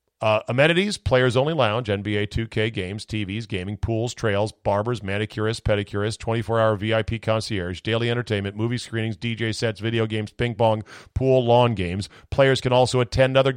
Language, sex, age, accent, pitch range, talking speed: English, male, 40-59, American, 100-130 Hz, 165 wpm